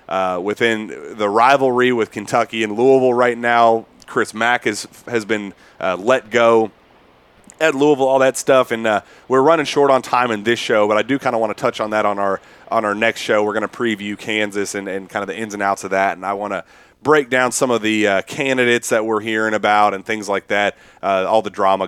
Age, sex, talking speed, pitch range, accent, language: 30-49, male, 240 wpm, 105-135 Hz, American, English